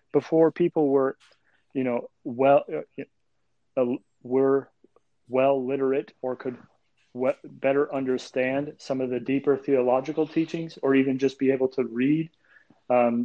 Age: 40-59